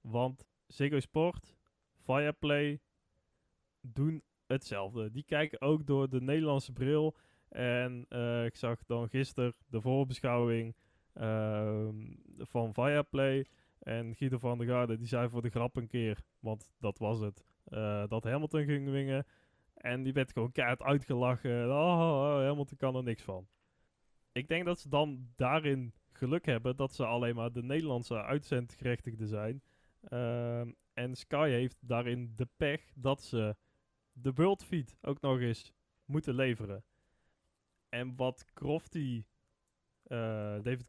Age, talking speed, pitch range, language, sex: 20-39, 140 wpm, 115-145 Hz, Dutch, male